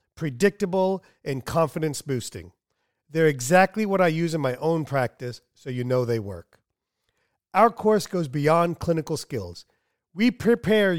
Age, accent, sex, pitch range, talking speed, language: 40-59, American, male, 135-185 Hz, 135 wpm, English